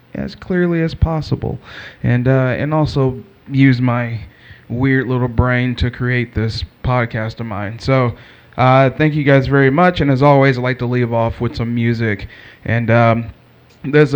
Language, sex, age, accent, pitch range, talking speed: English, male, 20-39, American, 120-140 Hz, 170 wpm